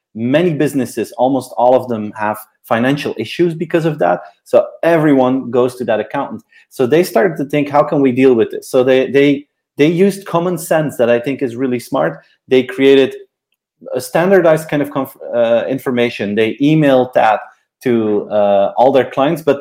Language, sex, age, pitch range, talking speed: English, male, 30-49, 125-155 Hz, 180 wpm